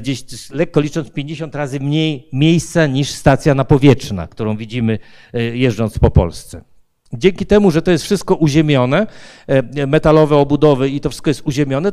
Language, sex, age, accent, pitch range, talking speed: Polish, male, 50-69, native, 135-165 Hz, 150 wpm